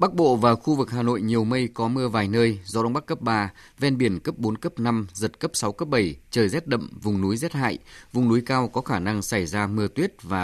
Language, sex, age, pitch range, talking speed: Vietnamese, male, 20-39, 100-125 Hz, 270 wpm